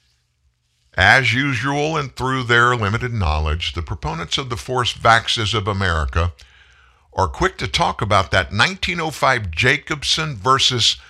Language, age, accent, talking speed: English, 60-79, American, 130 wpm